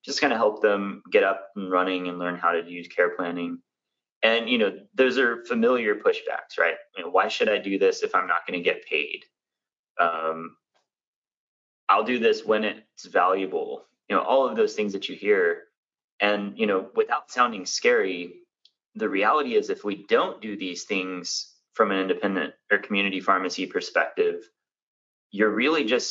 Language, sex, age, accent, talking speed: English, male, 30-49, American, 175 wpm